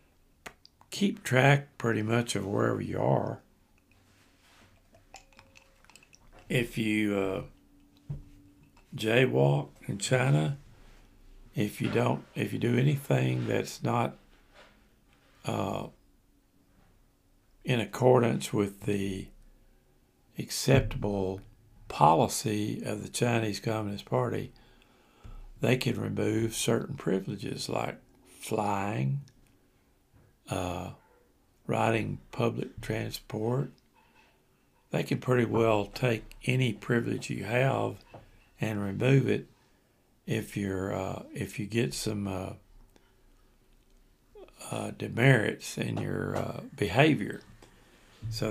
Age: 60-79